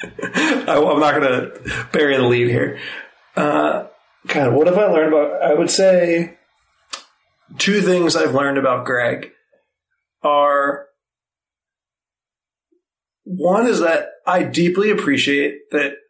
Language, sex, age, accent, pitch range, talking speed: English, male, 30-49, American, 130-160 Hz, 125 wpm